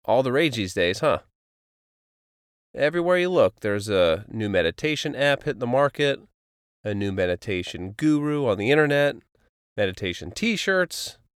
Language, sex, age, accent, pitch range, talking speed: English, male, 30-49, American, 100-140 Hz, 135 wpm